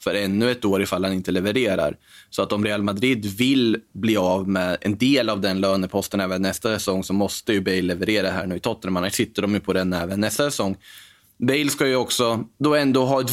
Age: 20-39